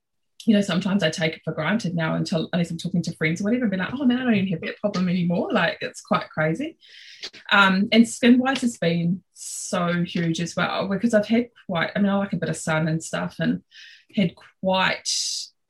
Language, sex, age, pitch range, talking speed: English, female, 20-39, 165-210 Hz, 230 wpm